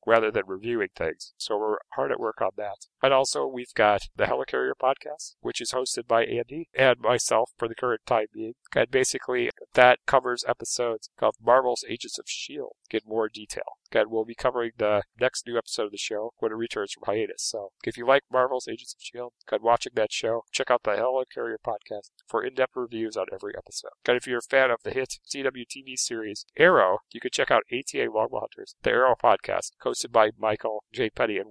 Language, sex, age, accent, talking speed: English, male, 40-59, American, 215 wpm